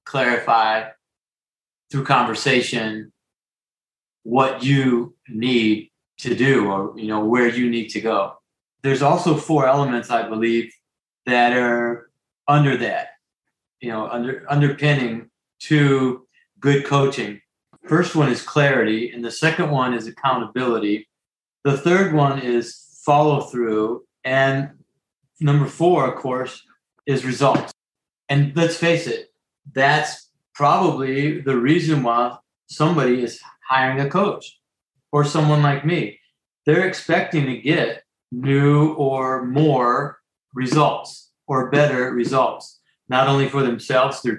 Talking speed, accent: 120 wpm, American